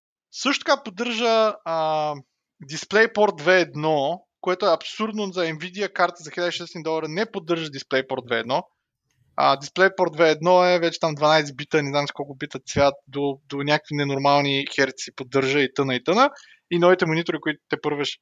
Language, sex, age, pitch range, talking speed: Bulgarian, male, 20-39, 140-195 Hz, 155 wpm